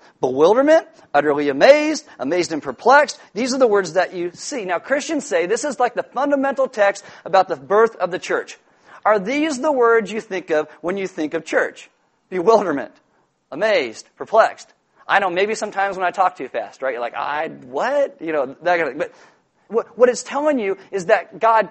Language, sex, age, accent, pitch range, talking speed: English, male, 40-59, American, 185-255 Hz, 195 wpm